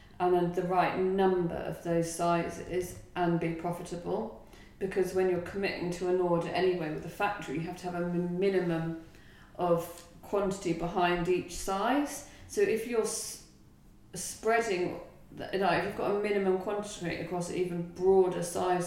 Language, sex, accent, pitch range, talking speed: English, female, British, 170-190 Hz, 155 wpm